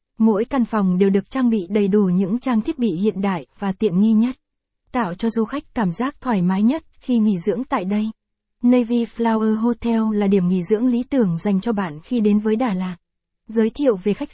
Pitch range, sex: 200-235 Hz, female